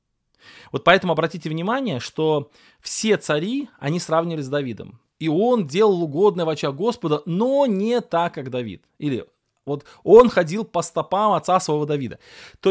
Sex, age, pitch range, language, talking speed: male, 20-39, 130-175 Hz, Russian, 150 wpm